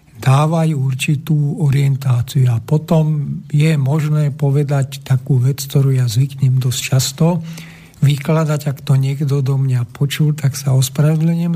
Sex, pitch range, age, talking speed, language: male, 135-160 Hz, 50-69, 130 wpm, Slovak